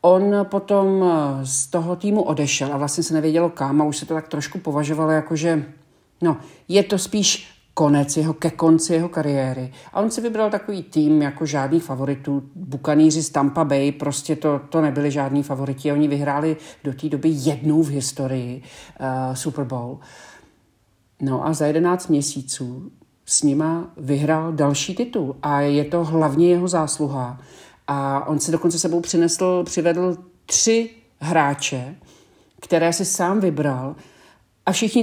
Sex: male